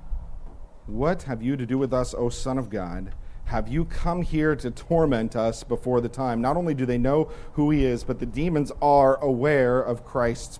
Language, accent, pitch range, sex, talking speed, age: English, American, 115-145 Hz, male, 205 wpm, 40-59